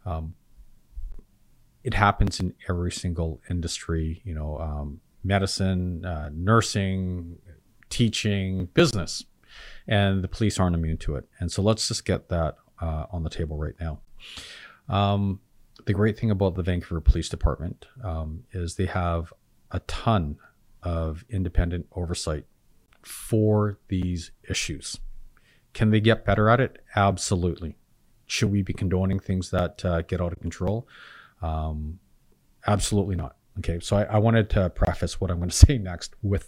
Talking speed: 150 wpm